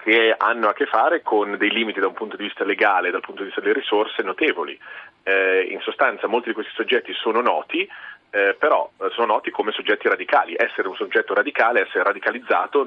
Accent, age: native, 30-49